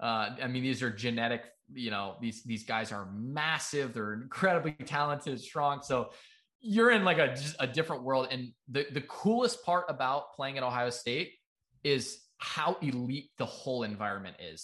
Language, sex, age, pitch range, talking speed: English, male, 20-39, 115-150 Hz, 175 wpm